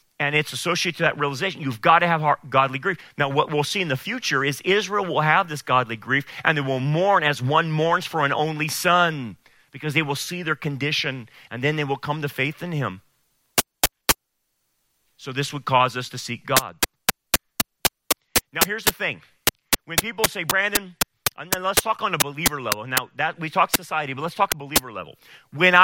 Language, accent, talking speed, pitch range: English, American, 205 wpm, 135-175 Hz